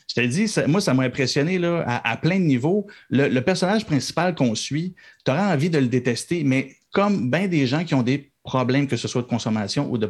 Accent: Canadian